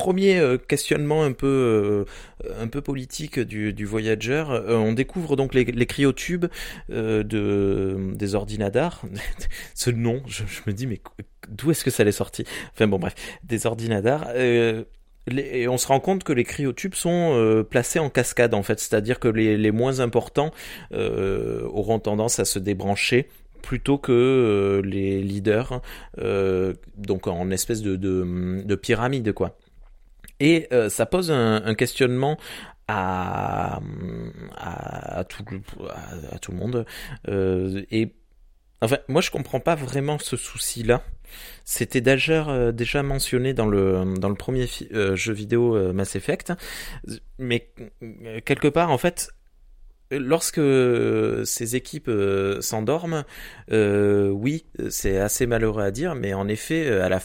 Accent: French